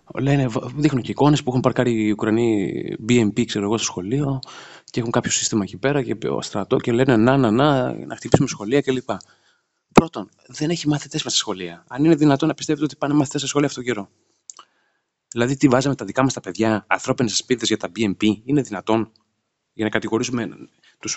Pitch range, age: 110-140 Hz, 30-49